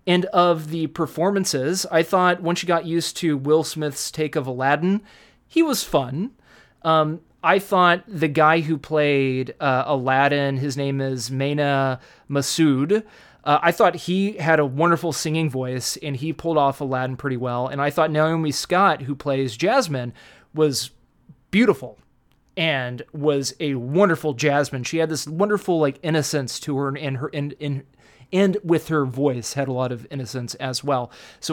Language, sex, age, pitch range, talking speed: English, male, 30-49, 135-170 Hz, 170 wpm